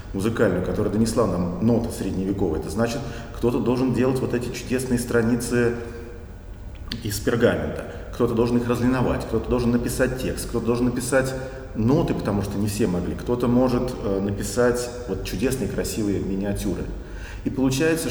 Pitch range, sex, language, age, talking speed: 100-120 Hz, male, Russian, 40-59, 140 wpm